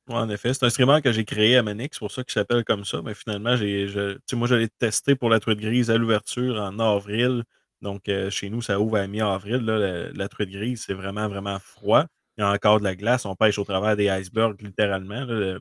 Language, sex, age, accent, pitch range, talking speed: French, male, 20-39, Canadian, 100-120 Hz, 255 wpm